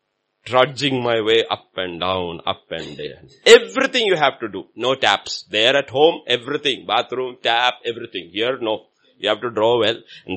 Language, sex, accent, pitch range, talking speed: English, male, Indian, 125-170 Hz, 180 wpm